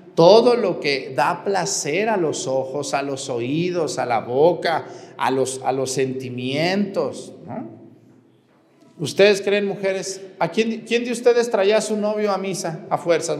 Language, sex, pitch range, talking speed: Spanish, male, 150-205 Hz, 145 wpm